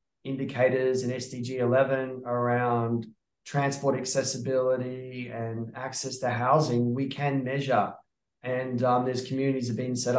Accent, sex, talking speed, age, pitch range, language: Australian, male, 125 wpm, 20-39, 120-135 Hz, English